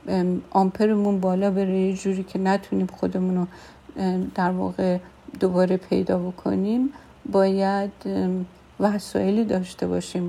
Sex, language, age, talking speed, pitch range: female, Persian, 50-69, 95 wpm, 175-195 Hz